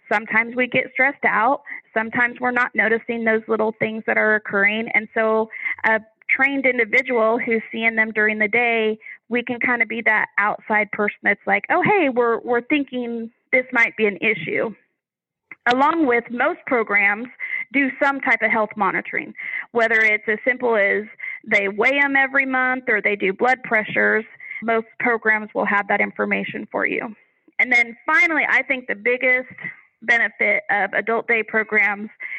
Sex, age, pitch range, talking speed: female, 30-49, 220-255 Hz, 170 wpm